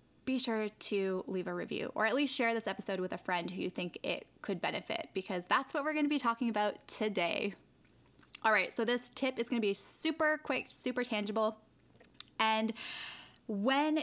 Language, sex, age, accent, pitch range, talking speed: English, female, 10-29, American, 205-250 Hz, 195 wpm